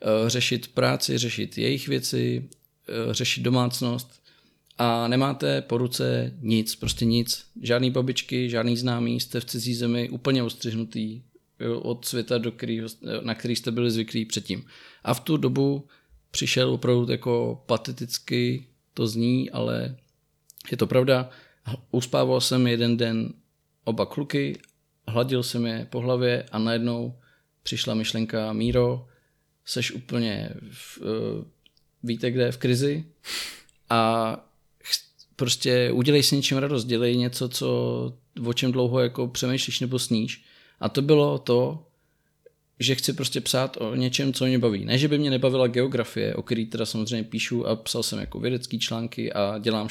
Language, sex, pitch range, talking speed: Czech, male, 115-130 Hz, 140 wpm